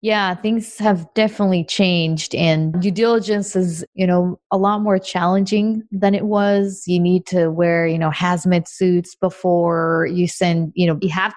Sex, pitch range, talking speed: female, 170-200 Hz, 175 wpm